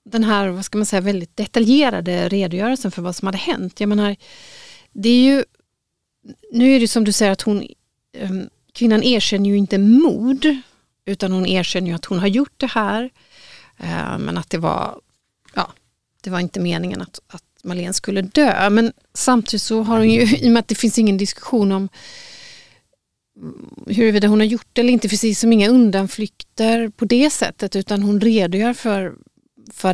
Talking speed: 180 wpm